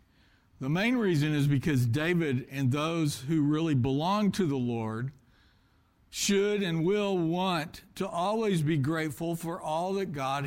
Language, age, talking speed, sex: English, 60-79, 150 wpm, male